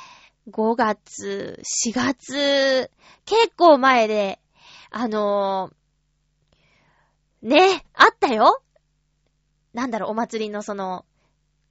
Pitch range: 210-335 Hz